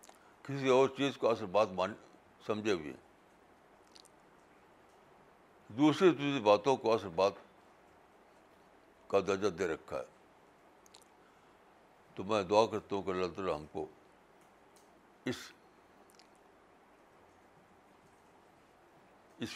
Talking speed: 90 wpm